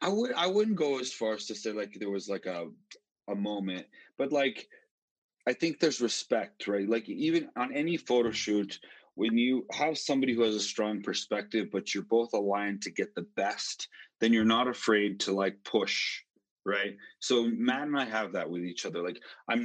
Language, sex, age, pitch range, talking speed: English, male, 30-49, 100-125 Hz, 200 wpm